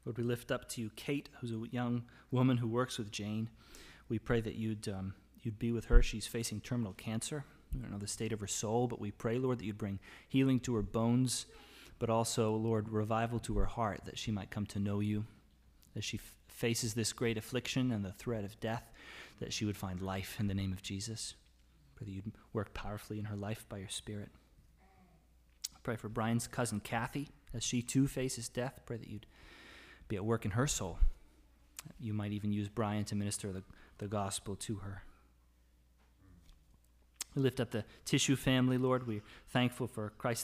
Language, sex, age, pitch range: English, male, 30-49, 100-120 Hz